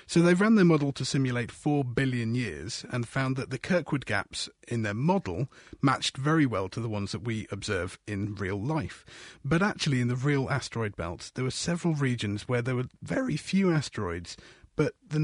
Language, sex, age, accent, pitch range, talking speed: English, male, 30-49, British, 110-150 Hz, 195 wpm